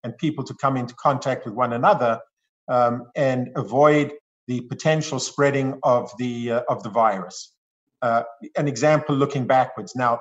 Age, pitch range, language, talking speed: 50-69, 125-150 Hz, English, 160 wpm